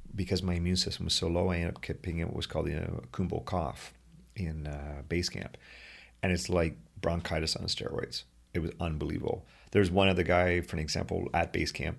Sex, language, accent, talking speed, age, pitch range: male, English, American, 210 wpm, 30-49, 80-95 Hz